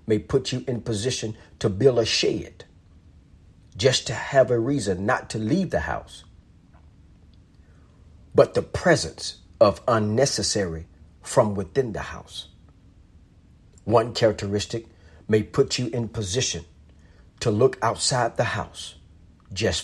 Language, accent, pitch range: English, American, 85-110 Hz